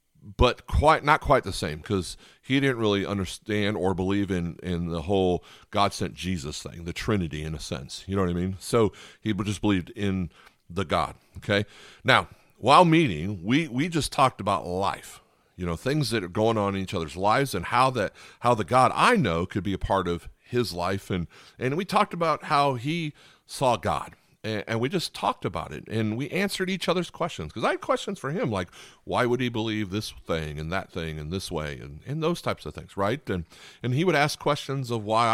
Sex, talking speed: male, 220 wpm